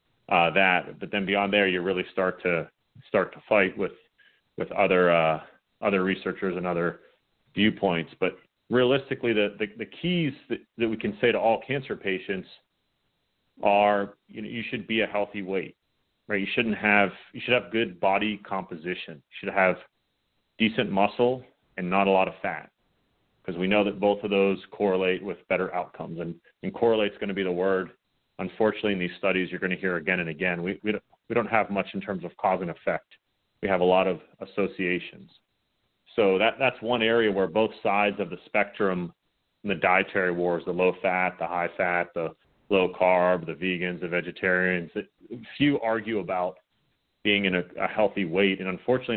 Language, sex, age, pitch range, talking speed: English, male, 30-49, 90-105 Hz, 190 wpm